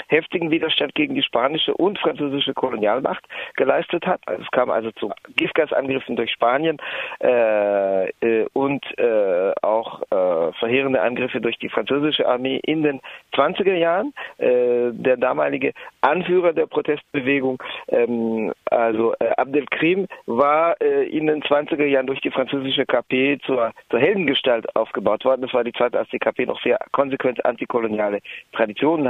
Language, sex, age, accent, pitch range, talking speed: German, male, 50-69, German, 125-160 Hz, 145 wpm